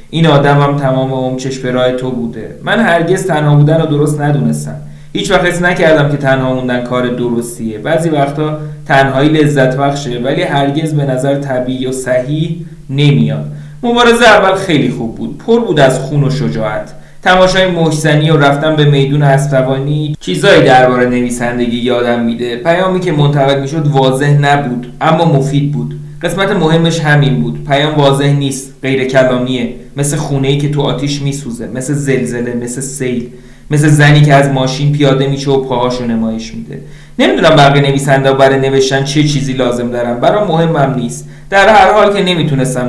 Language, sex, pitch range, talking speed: Persian, male, 125-150 Hz, 160 wpm